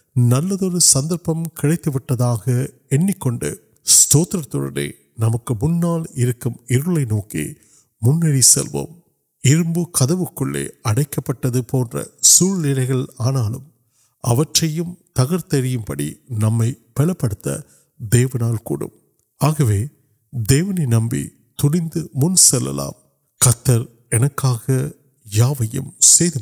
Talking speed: 30 wpm